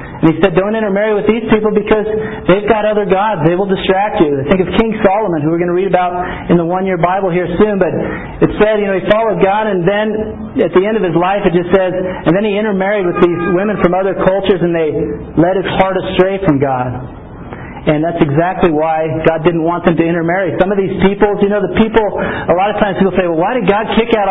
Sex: male